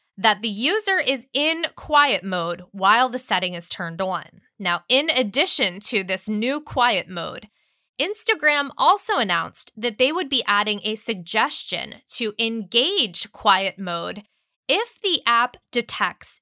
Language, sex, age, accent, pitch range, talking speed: English, female, 20-39, American, 195-280 Hz, 145 wpm